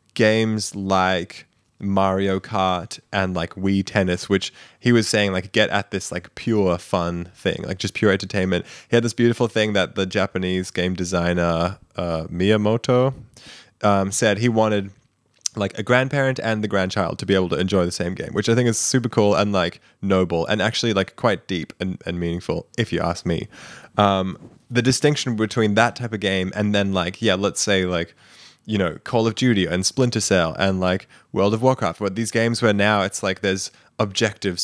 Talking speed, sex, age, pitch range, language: 195 wpm, male, 20-39, 90-110 Hz, English